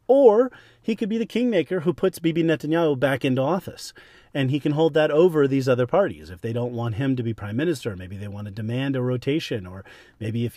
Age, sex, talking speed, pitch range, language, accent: 40-59, male, 235 wpm, 120-160 Hz, English, American